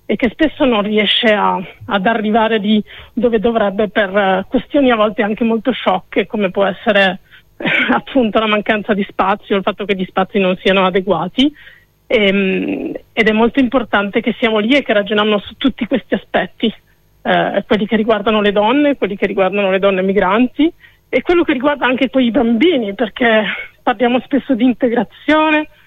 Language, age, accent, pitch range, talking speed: Italian, 30-49, native, 200-245 Hz, 175 wpm